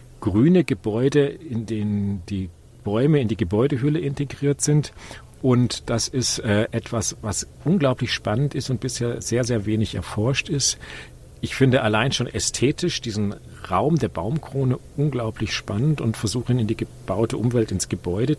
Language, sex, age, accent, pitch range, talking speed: German, male, 40-59, German, 110-135 Hz, 150 wpm